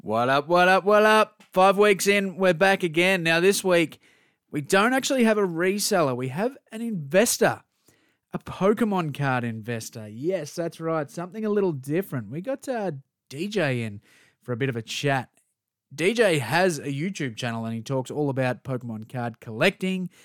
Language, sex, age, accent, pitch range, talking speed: English, male, 20-39, Australian, 125-185 Hz, 180 wpm